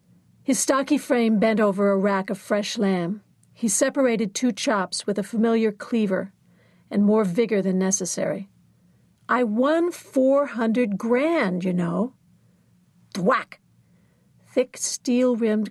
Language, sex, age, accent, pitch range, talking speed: English, female, 50-69, American, 195-250 Hz, 120 wpm